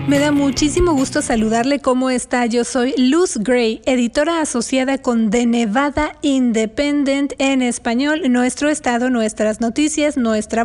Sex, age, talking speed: female, 30-49, 135 wpm